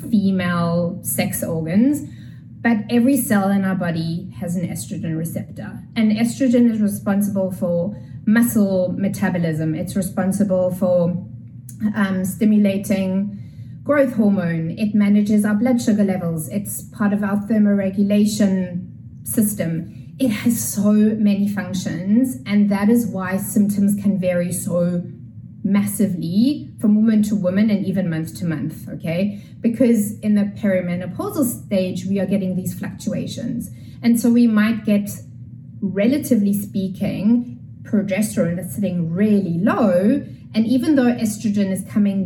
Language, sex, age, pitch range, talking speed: English, female, 20-39, 180-215 Hz, 130 wpm